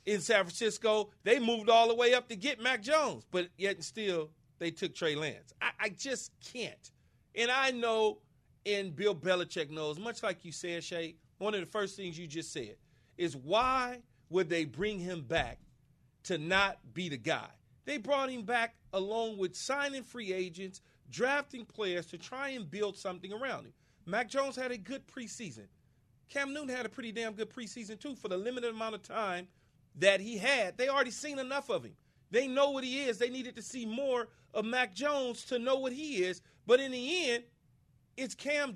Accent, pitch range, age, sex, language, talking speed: American, 180-255 Hz, 40-59, male, English, 200 wpm